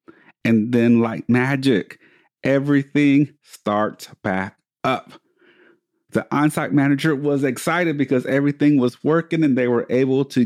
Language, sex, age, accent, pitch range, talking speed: English, male, 40-59, American, 120-150 Hz, 125 wpm